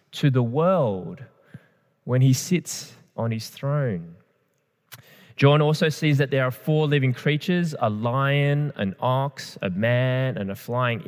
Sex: male